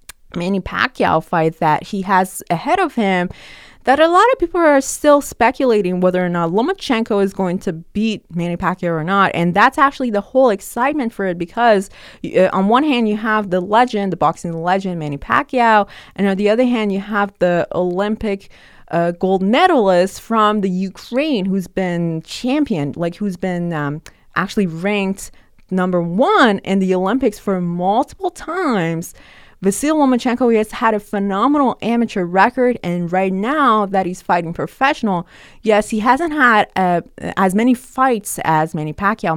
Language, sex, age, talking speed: English, female, 20-39, 165 wpm